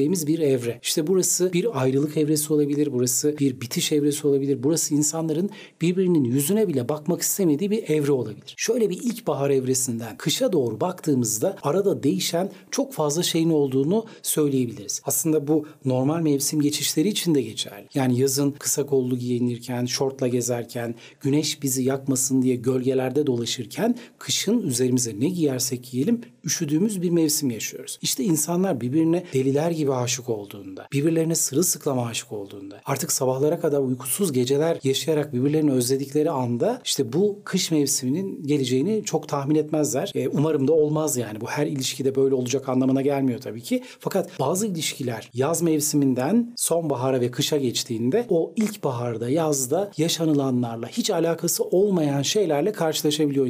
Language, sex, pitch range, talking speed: Turkish, male, 130-165 Hz, 145 wpm